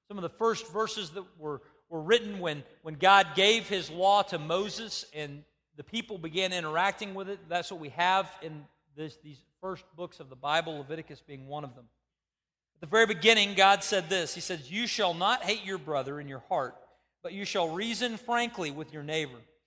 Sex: male